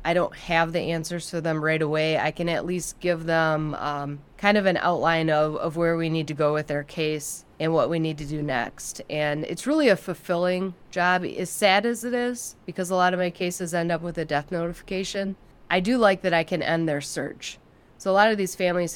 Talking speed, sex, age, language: 235 wpm, female, 20-39, English